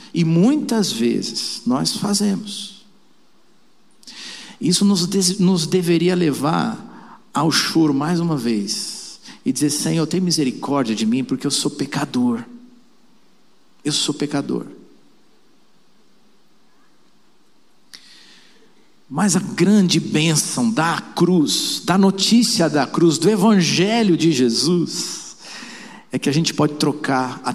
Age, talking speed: 50-69, 110 wpm